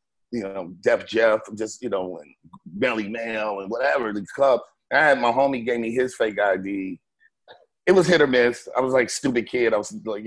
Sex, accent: male, American